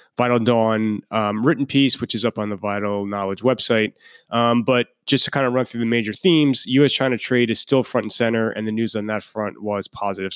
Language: English